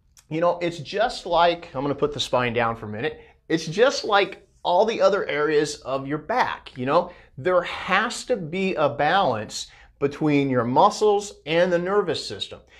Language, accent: English, American